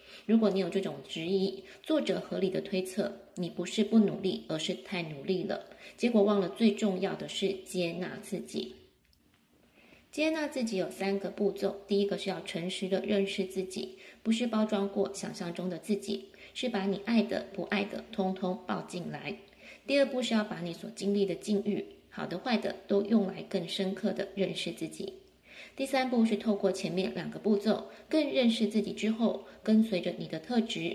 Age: 20-39